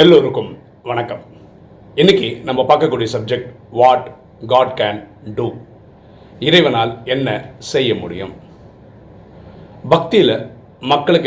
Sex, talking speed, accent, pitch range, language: male, 85 wpm, native, 105-130 Hz, Tamil